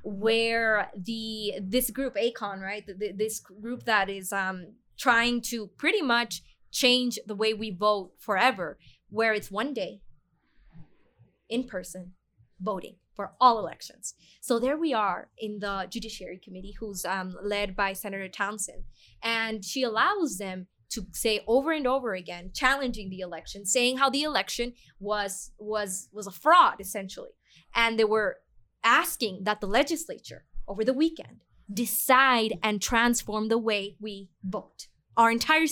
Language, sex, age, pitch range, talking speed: English, female, 20-39, 200-255 Hz, 150 wpm